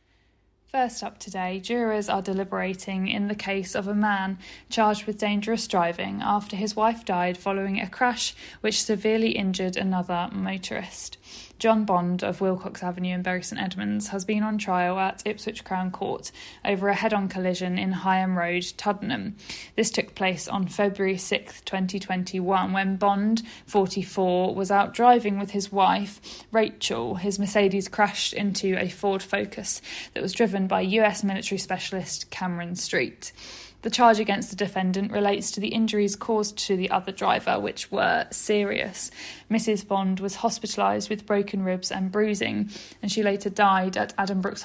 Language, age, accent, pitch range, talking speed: English, 10-29, British, 185-210 Hz, 160 wpm